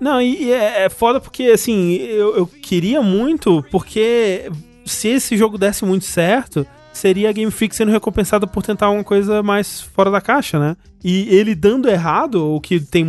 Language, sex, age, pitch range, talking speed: Portuguese, male, 20-39, 155-210 Hz, 180 wpm